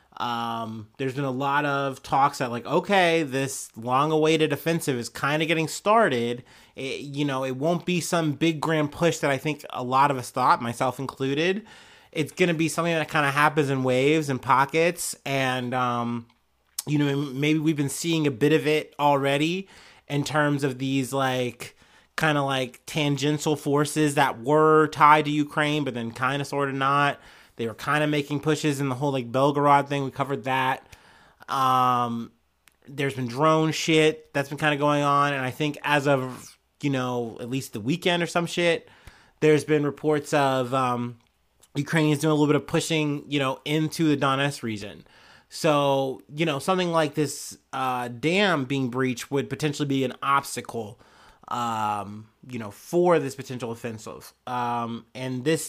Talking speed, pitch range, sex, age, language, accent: 180 wpm, 130-155 Hz, male, 30-49, English, American